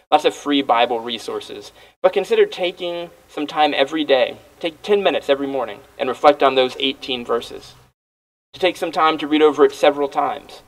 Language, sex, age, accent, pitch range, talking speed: English, male, 20-39, American, 120-150 Hz, 185 wpm